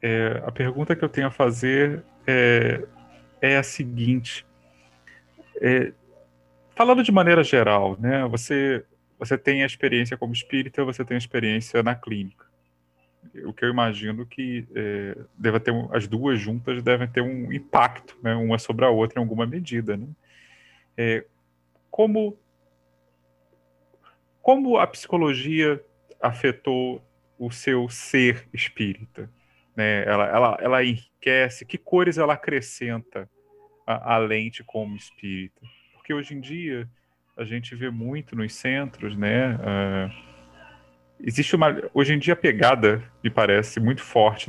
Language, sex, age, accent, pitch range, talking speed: Portuguese, male, 40-59, Brazilian, 100-130 Hz, 135 wpm